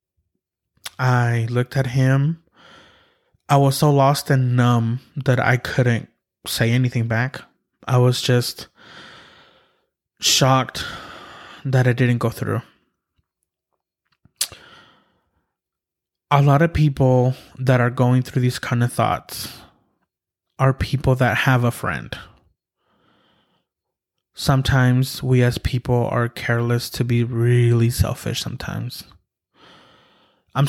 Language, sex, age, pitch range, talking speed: English, male, 20-39, 120-140 Hz, 110 wpm